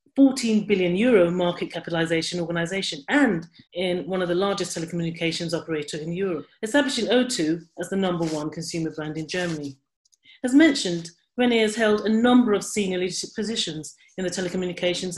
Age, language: 40-59, English